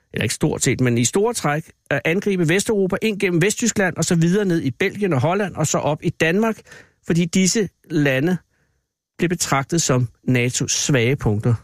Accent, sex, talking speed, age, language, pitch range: native, male, 180 wpm, 60-79, Danish, 140-195 Hz